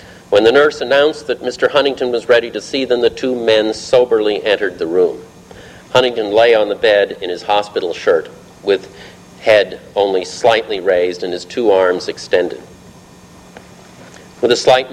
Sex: male